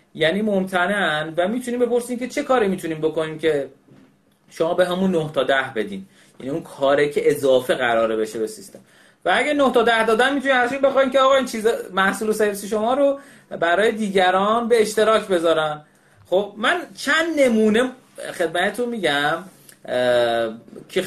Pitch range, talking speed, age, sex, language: 135-220 Hz, 160 wpm, 30-49, male, Persian